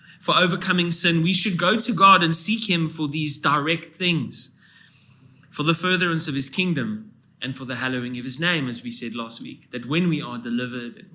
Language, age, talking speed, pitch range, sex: English, 20-39, 210 wpm, 130-170 Hz, male